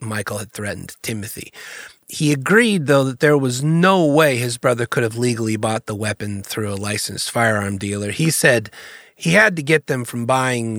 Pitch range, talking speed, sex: 110-140 Hz, 190 wpm, male